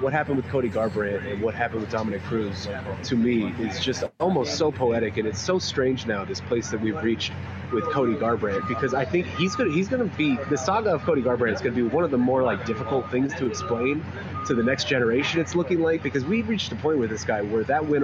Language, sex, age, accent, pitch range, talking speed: English, male, 30-49, American, 110-140 Hz, 245 wpm